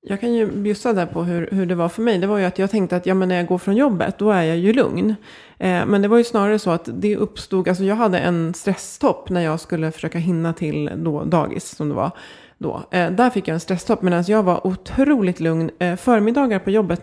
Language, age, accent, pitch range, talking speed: Swedish, 30-49, native, 165-200 Hz, 255 wpm